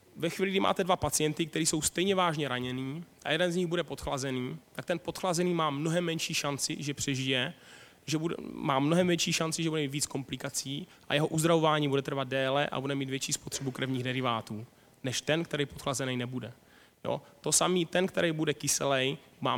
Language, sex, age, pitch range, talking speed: Czech, male, 20-39, 135-165 Hz, 195 wpm